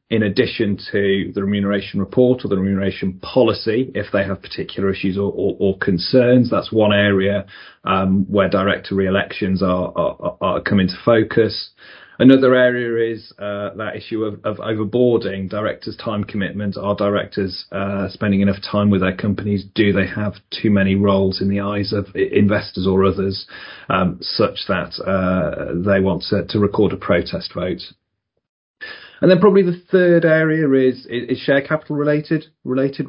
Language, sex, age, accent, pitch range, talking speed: English, male, 30-49, British, 100-130 Hz, 165 wpm